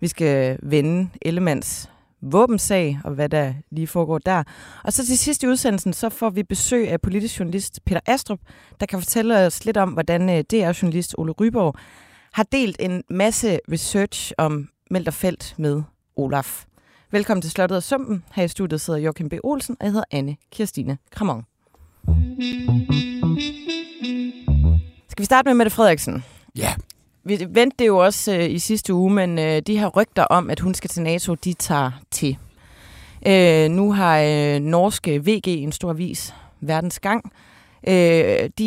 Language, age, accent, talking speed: Danish, 30-49, native, 160 wpm